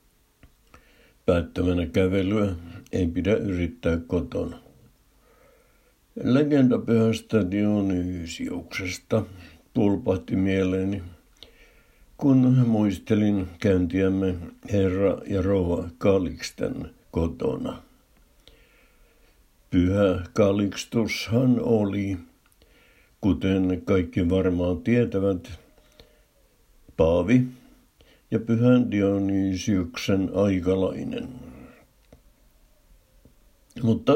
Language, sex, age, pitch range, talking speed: Finnish, male, 60-79, 90-105 Hz, 55 wpm